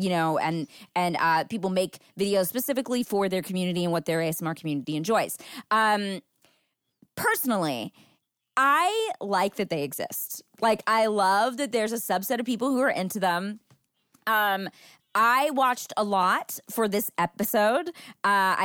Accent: American